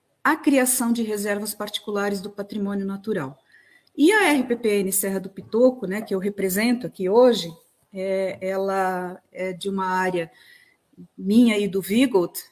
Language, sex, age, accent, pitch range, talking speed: Portuguese, female, 40-59, Brazilian, 190-265 Hz, 140 wpm